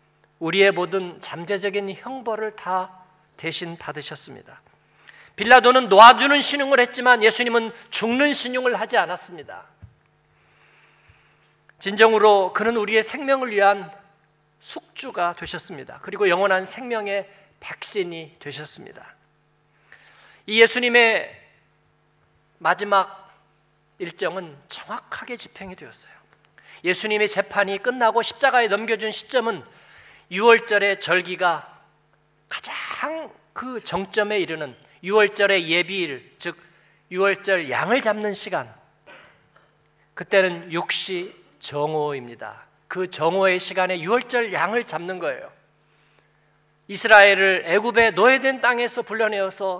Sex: male